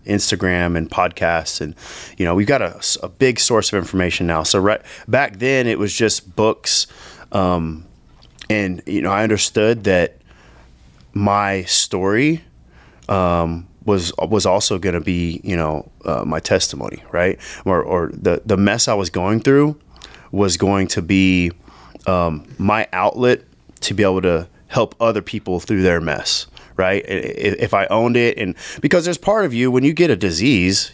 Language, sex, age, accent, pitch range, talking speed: English, male, 20-39, American, 90-110 Hz, 170 wpm